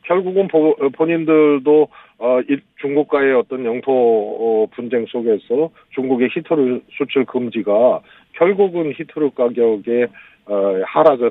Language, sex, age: Korean, male, 40-59